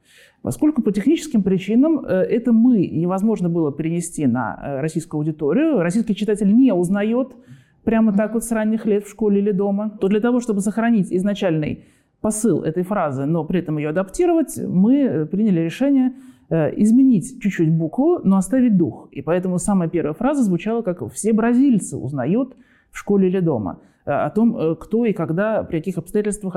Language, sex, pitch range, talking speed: Russian, male, 175-235 Hz, 160 wpm